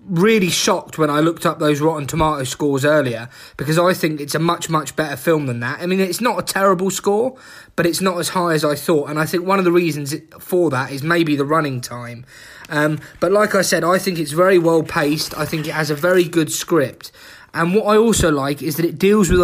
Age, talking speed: 20-39, 245 wpm